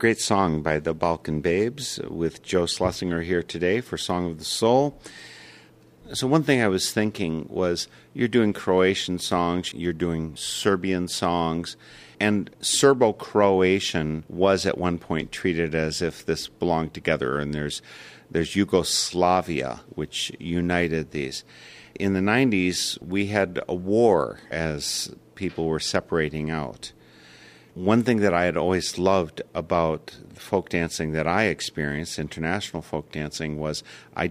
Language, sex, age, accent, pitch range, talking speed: English, male, 50-69, American, 80-95 Hz, 140 wpm